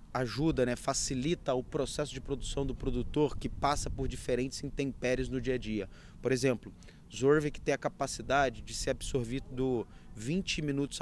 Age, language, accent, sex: 30-49, Portuguese, Brazilian, male